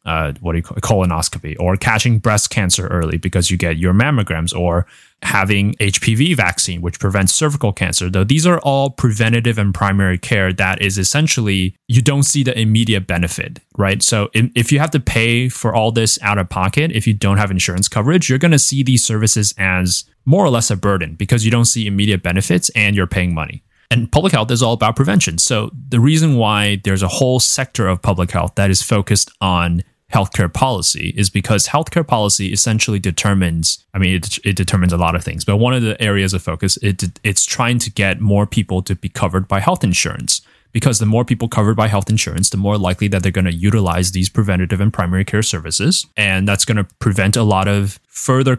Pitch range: 95-120 Hz